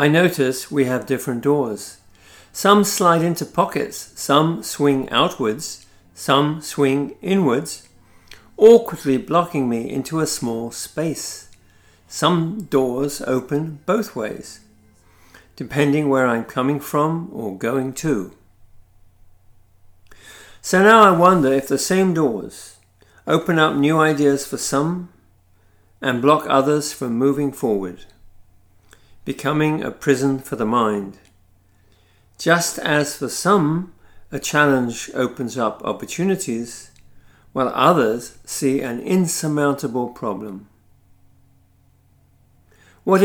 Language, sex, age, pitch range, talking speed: English, male, 50-69, 100-150 Hz, 110 wpm